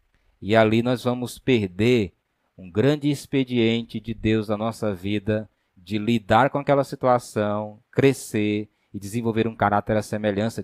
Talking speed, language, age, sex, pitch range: 140 wpm, Portuguese, 20-39, male, 105-140 Hz